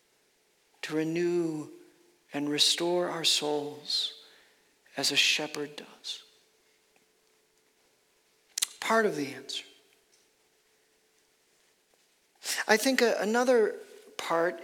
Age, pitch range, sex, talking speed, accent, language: 50-69, 175-240 Hz, male, 75 wpm, American, English